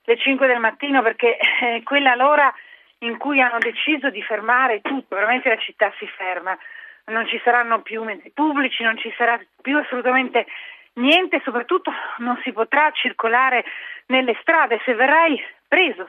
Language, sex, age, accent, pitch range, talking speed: Italian, female, 40-59, native, 230-290 Hz, 155 wpm